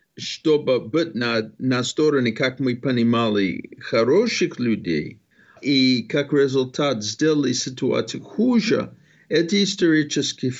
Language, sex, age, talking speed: Russian, male, 50-69, 100 wpm